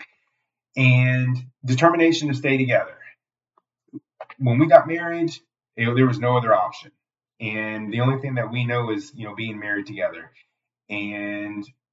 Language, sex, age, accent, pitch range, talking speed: English, male, 30-49, American, 110-130 Hz, 150 wpm